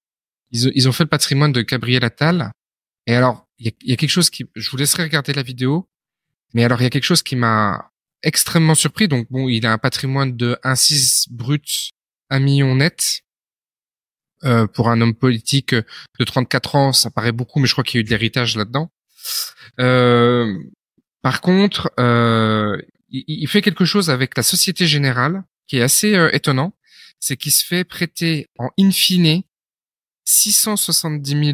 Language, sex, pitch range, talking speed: French, male, 125-165 Hz, 180 wpm